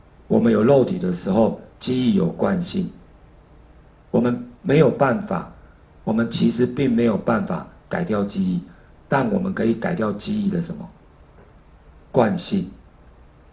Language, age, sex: Chinese, 50-69, male